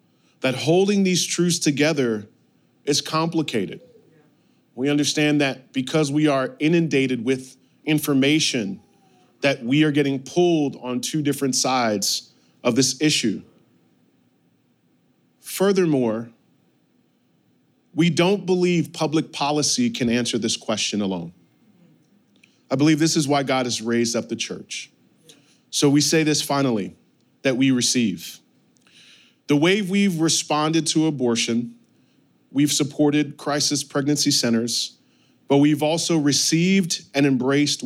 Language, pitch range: English, 125-155 Hz